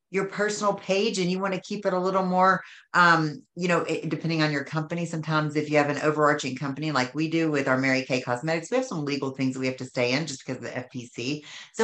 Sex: female